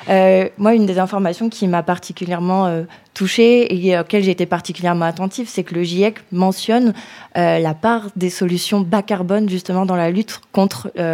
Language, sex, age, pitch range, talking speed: French, female, 20-39, 180-210 Hz, 185 wpm